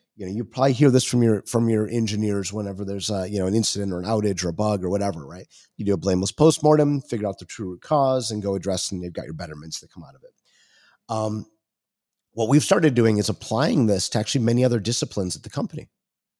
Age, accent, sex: 30-49, American, male